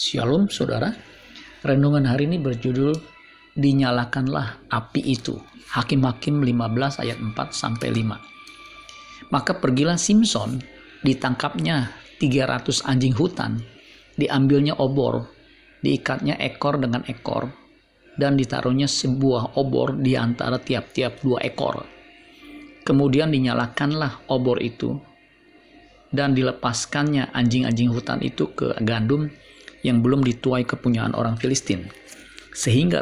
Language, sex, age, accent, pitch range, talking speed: Indonesian, male, 50-69, native, 125-145 Hz, 95 wpm